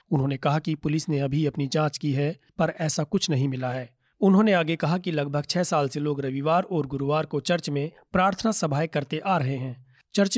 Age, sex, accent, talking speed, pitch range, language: 40-59, male, native, 220 wpm, 140-170 Hz, Hindi